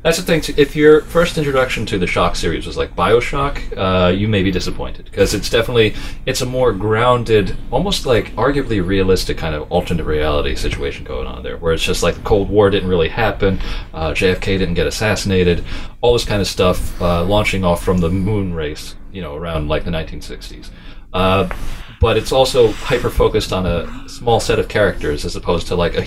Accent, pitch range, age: American, 80-110 Hz, 30-49